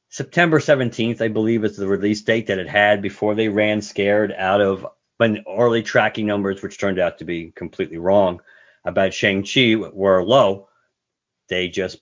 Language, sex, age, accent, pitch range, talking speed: English, male, 50-69, American, 105-135 Hz, 170 wpm